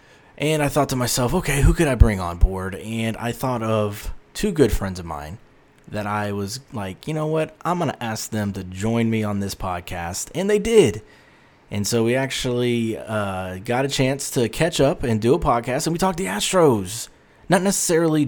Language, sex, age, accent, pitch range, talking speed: English, male, 20-39, American, 100-135 Hz, 210 wpm